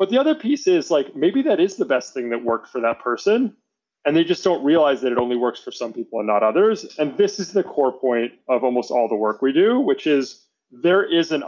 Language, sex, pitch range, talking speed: English, male, 125-180 Hz, 260 wpm